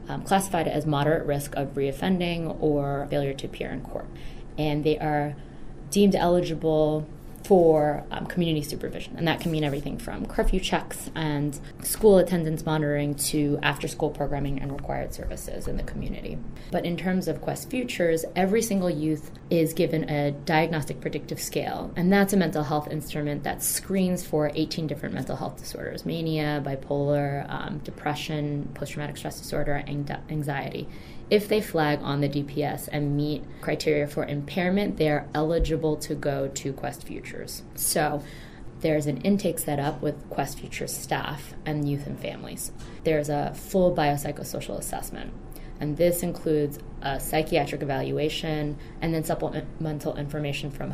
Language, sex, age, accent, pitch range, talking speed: English, female, 20-39, American, 145-165 Hz, 155 wpm